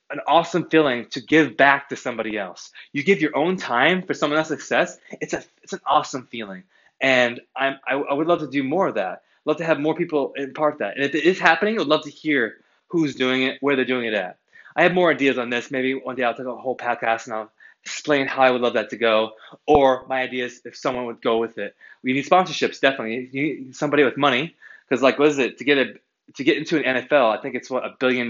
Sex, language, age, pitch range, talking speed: male, English, 20-39, 125-150 Hz, 260 wpm